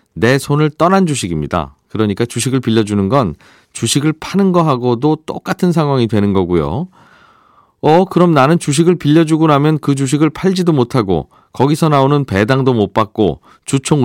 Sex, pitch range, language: male, 115-155 Hz, Korean